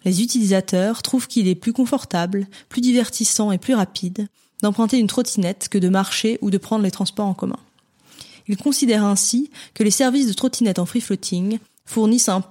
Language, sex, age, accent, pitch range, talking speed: French, female, 20-39, French, 190-225 Hz, 180 wpm